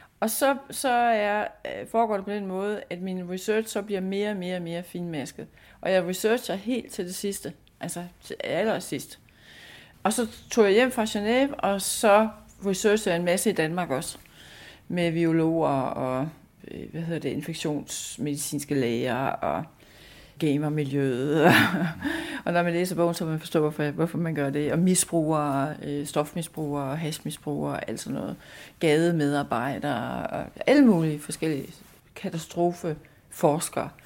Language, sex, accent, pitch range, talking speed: Danish, female, native, 160-220 Hz, 145 wpm